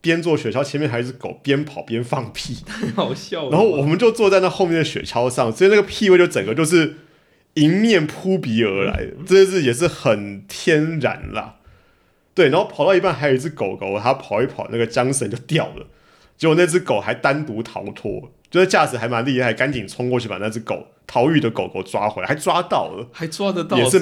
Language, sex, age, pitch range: Chinese, male, 30-49, 110-160 Hz